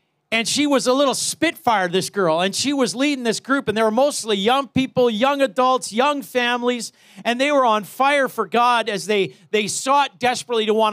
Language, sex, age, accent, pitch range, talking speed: English, male, 40-59, American, 180-240 Hz, 210 wpm